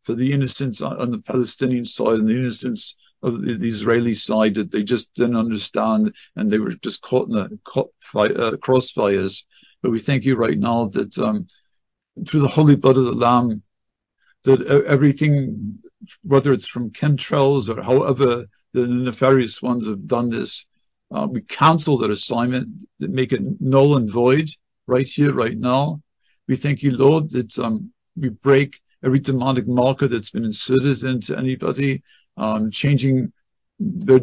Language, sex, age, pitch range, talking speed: English, male, 50-69, 120-140 Hz, 160 wpm